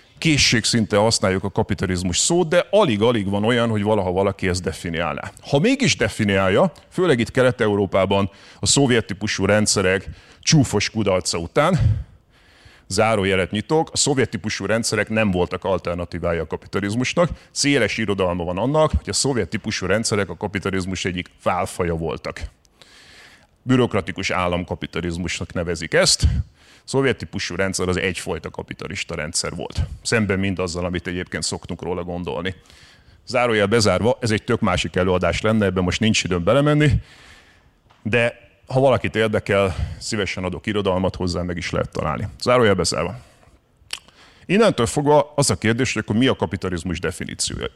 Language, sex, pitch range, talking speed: Hungarian, male, 90-115 Hz, 140 wpm